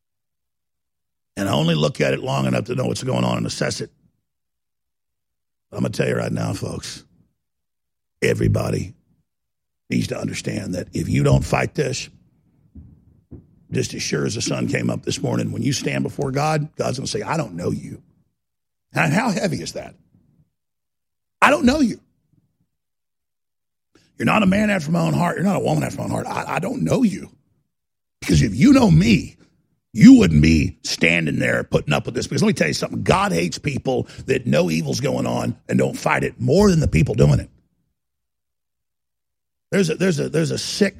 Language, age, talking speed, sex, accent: English, 50-69, 195 wpm, male, American